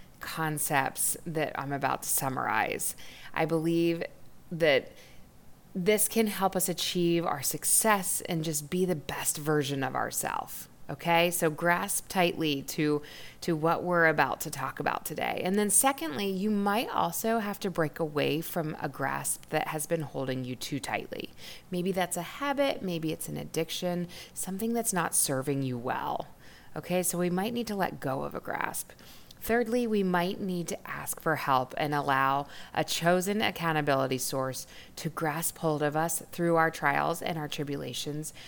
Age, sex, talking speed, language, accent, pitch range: 20-39, female, 165 wpm, English, American, 140-180 Hz